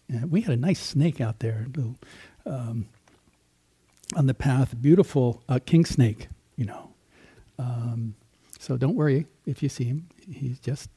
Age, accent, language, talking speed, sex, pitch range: 60-79, American, English, 165 wpm, male, 115-145 Hz